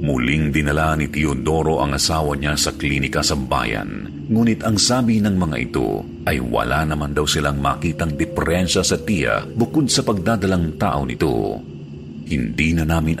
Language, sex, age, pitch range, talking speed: Filipino, male, 50-69, 75-95 Hz, 155 wpm